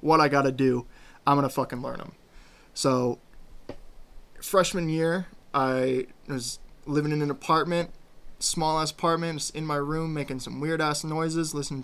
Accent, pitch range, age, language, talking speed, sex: American, 135-165 Hz, 20-39, English, 155 wpm, male